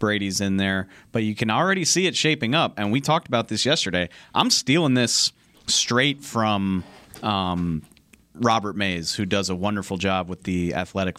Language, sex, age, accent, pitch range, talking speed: English, male, 30-49, American, 90-115 Hz, 175 wpm